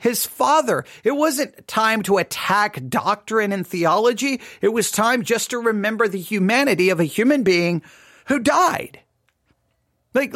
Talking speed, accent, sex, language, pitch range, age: 145 wpm, American, male, English, 210-280 Hz, 40-59